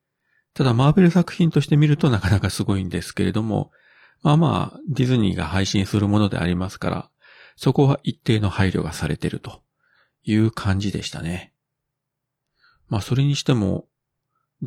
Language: Japanese